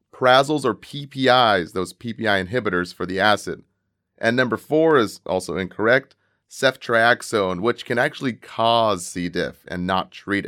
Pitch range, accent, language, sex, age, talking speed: 100-140 Hz, American, English, male, 30-49, 145 wpm